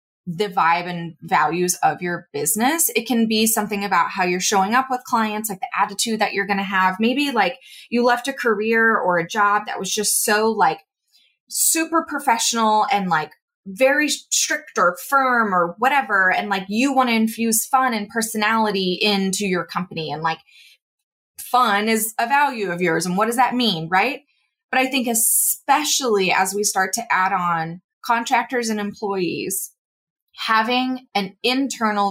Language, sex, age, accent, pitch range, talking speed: English, female, 20-39, American, 190-250 Hz, 170 wpm